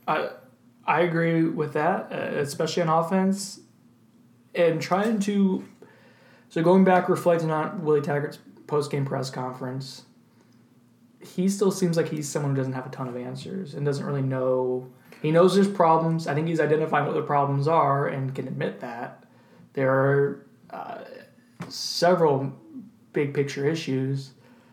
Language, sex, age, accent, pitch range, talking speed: English, male, 20-39, American, 140-175 Hz, 145 wpm